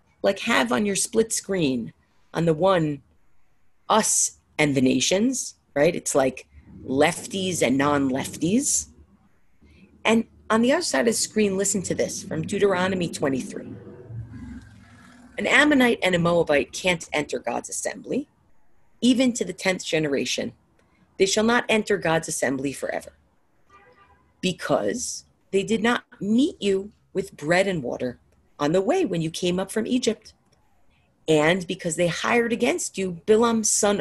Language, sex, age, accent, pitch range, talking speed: English, female, 40-59, American, 160-225 Hz, 145 wpm